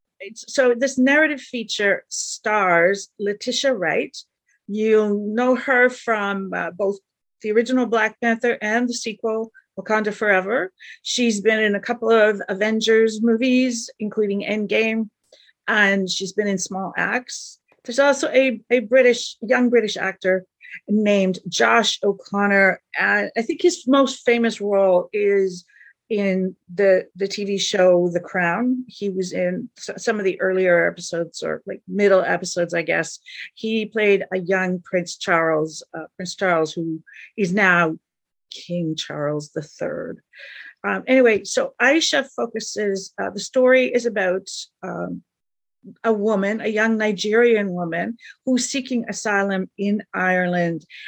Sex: female